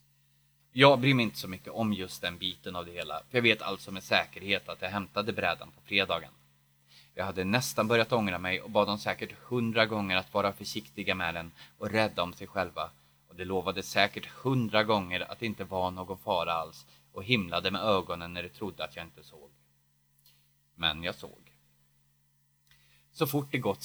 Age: 20-39